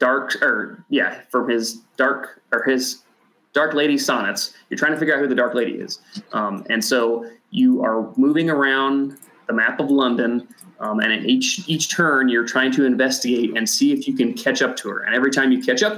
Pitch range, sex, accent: 120-150 Hz, male, American